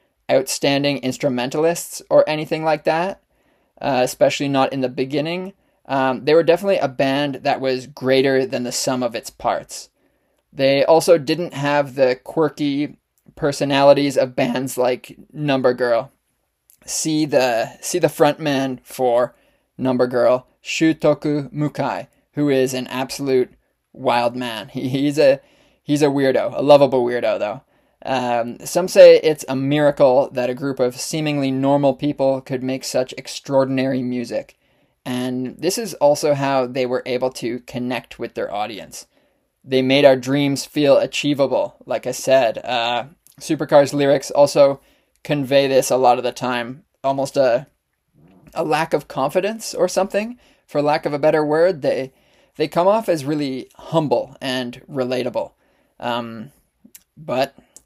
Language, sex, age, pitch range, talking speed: English, male, 20-39, 130-150 Hz, 145 wpm